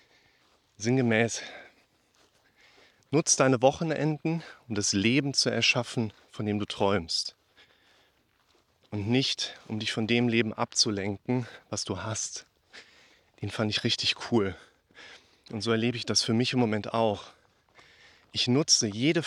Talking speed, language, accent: 130 wpm, German, German